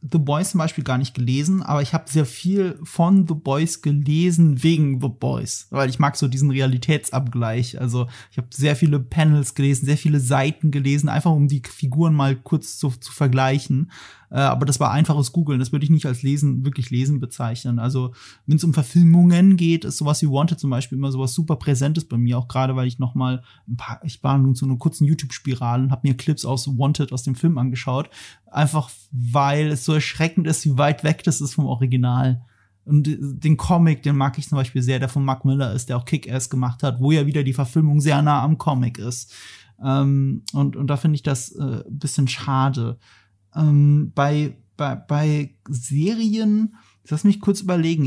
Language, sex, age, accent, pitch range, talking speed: German, male, 30-49, German, 130-160 Hz, 205 wpm